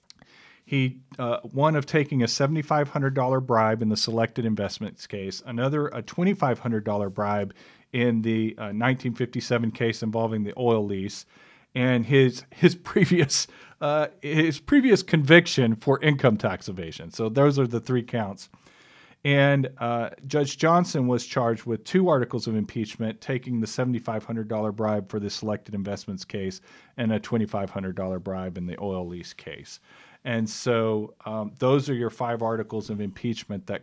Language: English